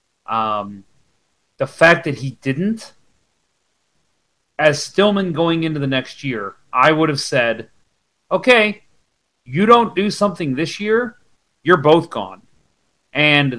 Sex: male